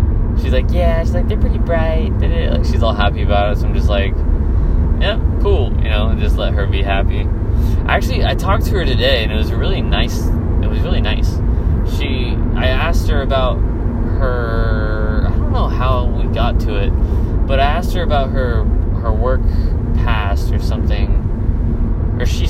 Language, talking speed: English, 185 wpm